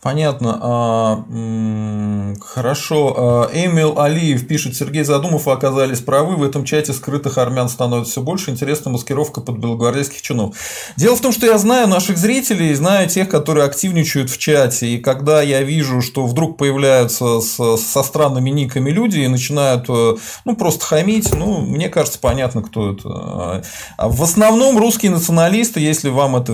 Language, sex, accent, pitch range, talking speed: Russian, male, native, 120-160 Hz, 150 wpm